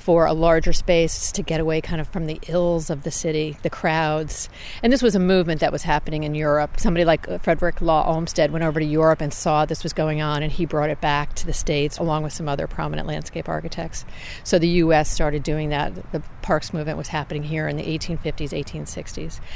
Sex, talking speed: female, 225 wpm